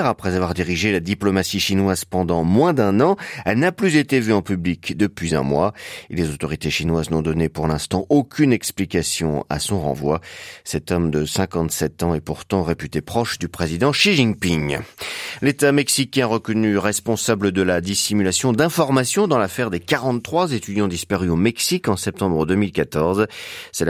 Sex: male